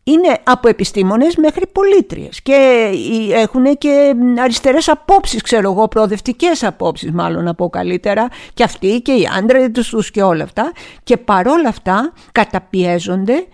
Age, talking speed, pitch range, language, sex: 50-69, 135 wpm, 185-255 Hz, Greek, female